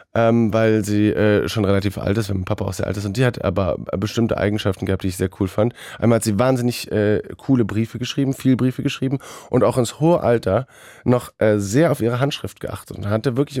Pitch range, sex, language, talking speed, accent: 100-120 Hz, male, German, 235 wpm, German